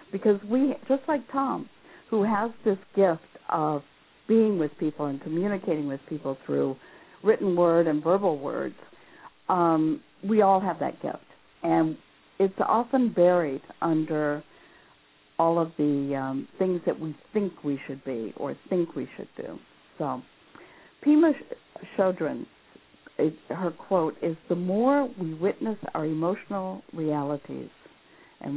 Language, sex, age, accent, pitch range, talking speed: English, female, 60-79, American, 155-210 Hz, 135 wpm